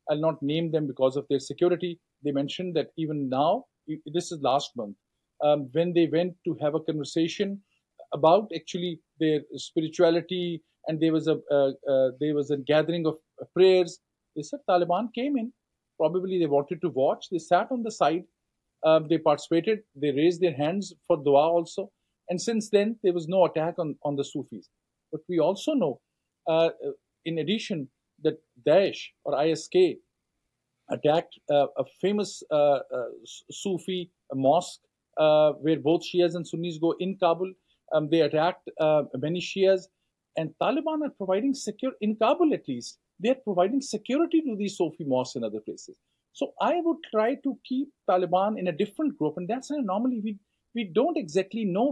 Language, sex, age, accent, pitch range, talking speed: English, male, 50-69, Indian, 155-210 Hz, 175 wpm